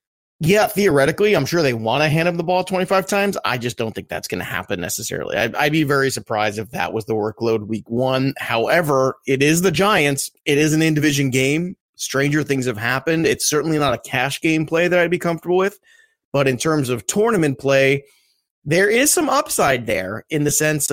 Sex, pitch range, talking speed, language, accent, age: male, 130-170 Hz, 210 wpm, English, American, 30-49